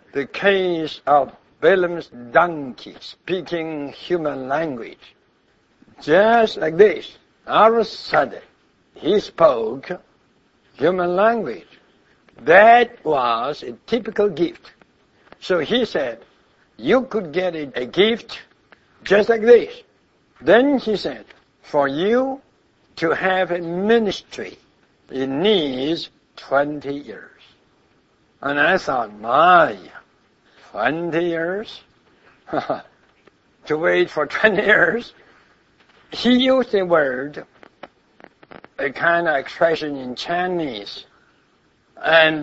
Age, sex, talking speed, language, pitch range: 60-79, male, 100 wpm, English, 155-215 Hz